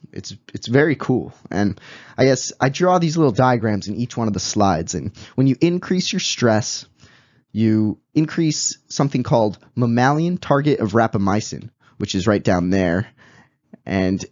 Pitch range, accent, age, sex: 110-145 Hz, American, 20-39, male